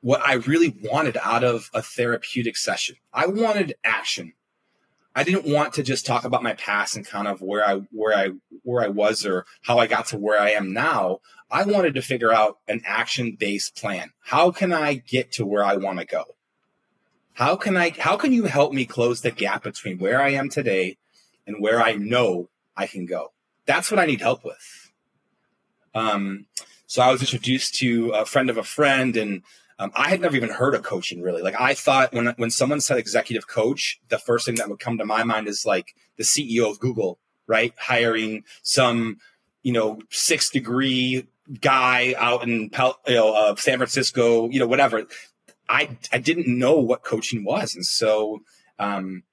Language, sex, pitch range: English, male, 110-130 Hz